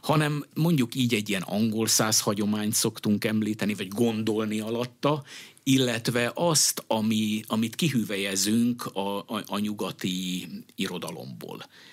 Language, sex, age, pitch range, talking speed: Hungarian, male, 50-69, 95-130 Hz, 110 wpm